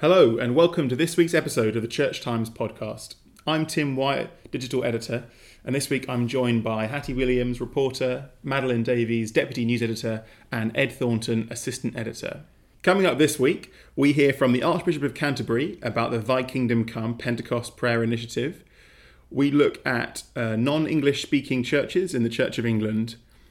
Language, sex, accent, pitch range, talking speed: English, male, British, 115-145 Hz, 170 wpm